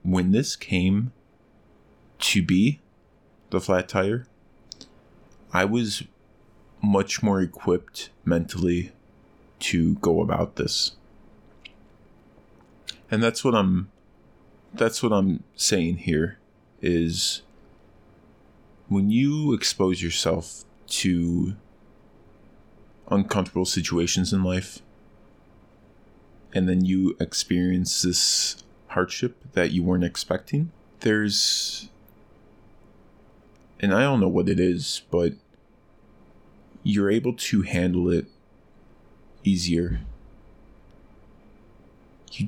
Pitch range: 85-105 Hz